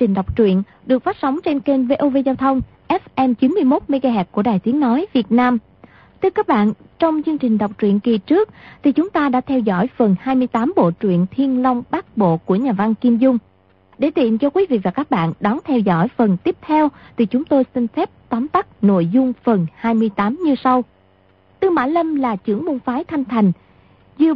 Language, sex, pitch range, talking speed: Vietnamese, female, 205-285 Hz, 210 wpm